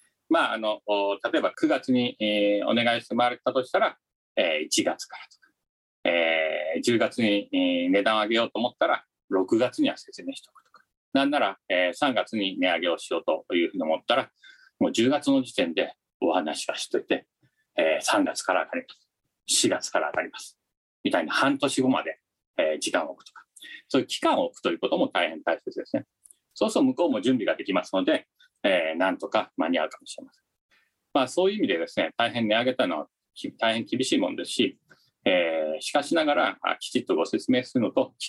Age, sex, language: 40-59, male, Japanese